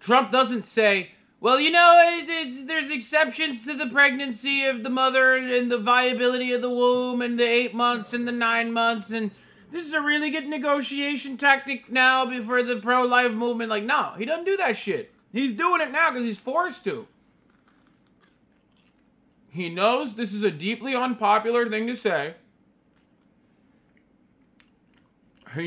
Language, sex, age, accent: English, male, 30-49, American